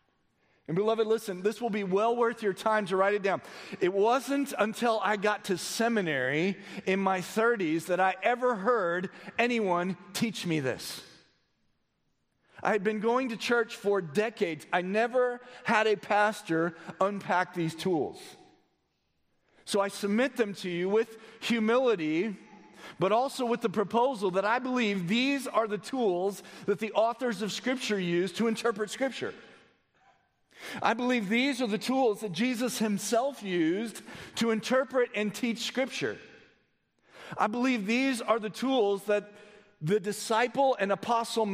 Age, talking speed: 40-59, 150 wpm